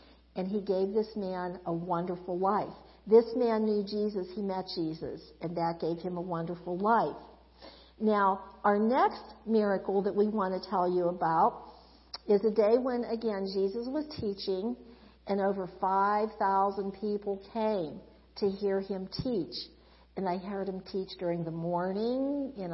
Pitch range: 185-230 Hz